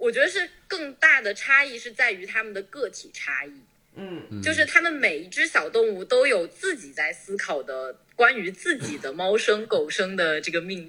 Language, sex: Chinese, female